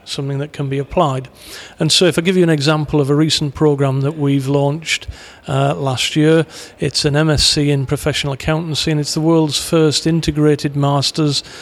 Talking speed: 185 wpm